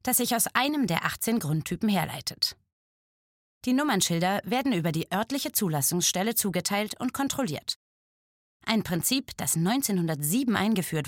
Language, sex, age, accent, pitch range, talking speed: German, female, 30-49, German, 160-220 Hz, 125 wpm